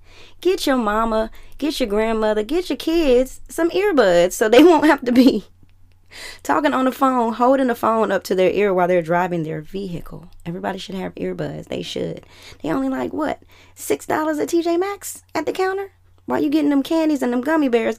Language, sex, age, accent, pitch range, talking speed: English, female, 20-39, American, 150-235 Hz, 195 wpm